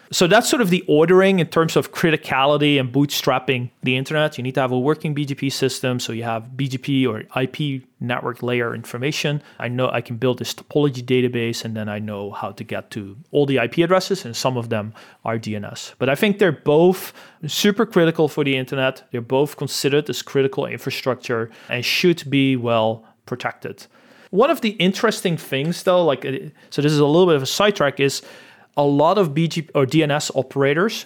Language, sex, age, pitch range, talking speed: English, male, 30-49, 120-155 Hz, 195 wpm